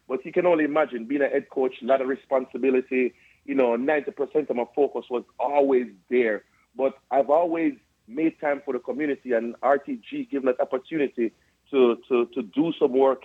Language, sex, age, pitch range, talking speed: English, male, 40-59, 125-150 Hz, 185 wpm